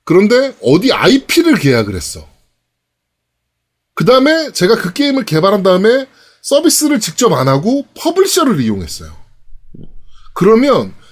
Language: Korean